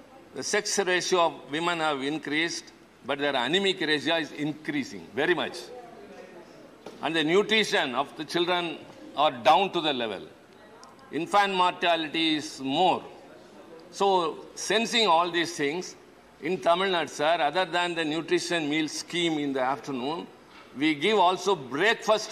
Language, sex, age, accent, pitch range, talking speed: Tamil, male, 50-69, native, 160-215 Hz, 140 wpm